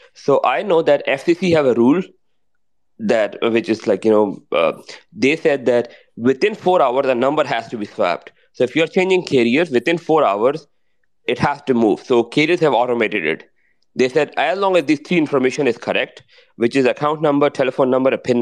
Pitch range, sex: 120-170 Hz, male